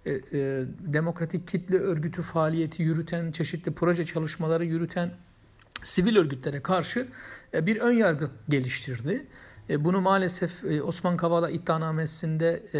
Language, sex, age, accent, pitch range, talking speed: Turkish, male, 60-79, native, 150-180 Hz, 100 wpm